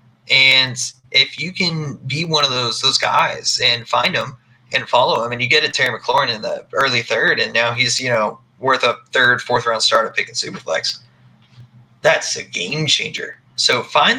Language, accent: English, American